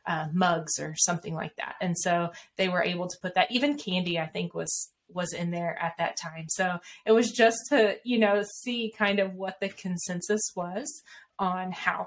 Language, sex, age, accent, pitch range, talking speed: English, female, 20-39, American, 180-210 Hz, 205 wpm